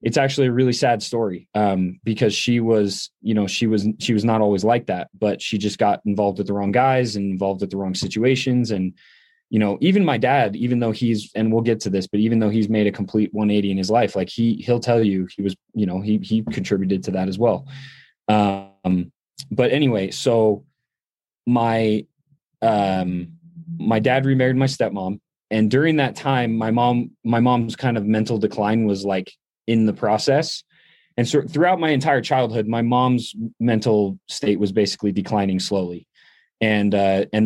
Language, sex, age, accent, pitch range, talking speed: English, male, 20-39, American, 100-120 Hz, 195 wpm